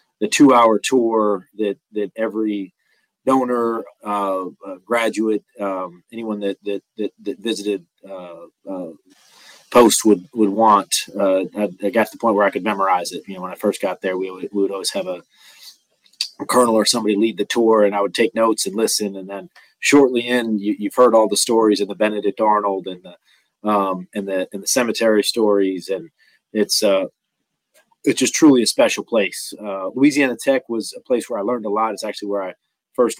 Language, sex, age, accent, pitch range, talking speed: English, male, 30-49, American, 100-110 Hz, 200 wpm